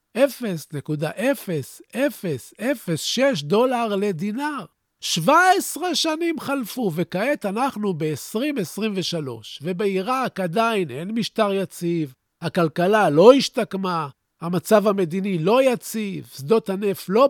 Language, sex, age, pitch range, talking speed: Hebrew, male, 50-69, 165-230 Hz, 85 wpm